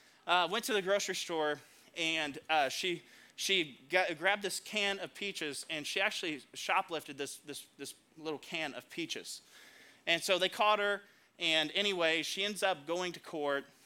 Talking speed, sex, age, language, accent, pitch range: 175 wpm, male, 30-49, English, American, 155-205 Hz